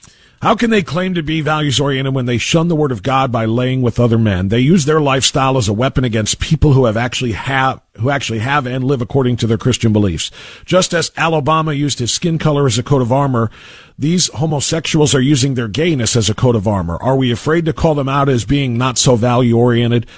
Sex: male